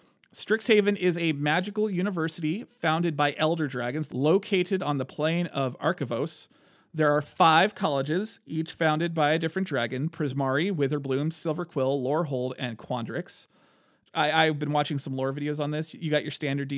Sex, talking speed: male, 155 wpm